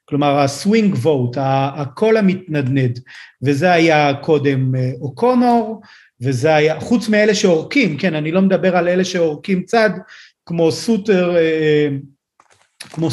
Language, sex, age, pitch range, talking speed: Hebrew, male, 40-59, 155-205 Hz, 115 wpm